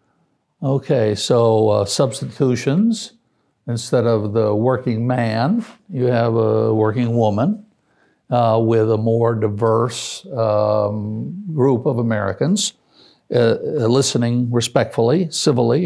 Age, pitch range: 60-79, 115-145 Hz